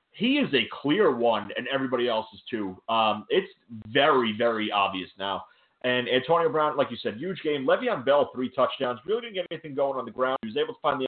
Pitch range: 125-155 Hz